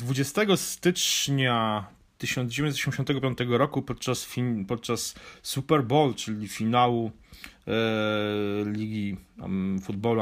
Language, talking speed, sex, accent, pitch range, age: Polish, 90 wpm, male, native, 105-130 Hz, 30-49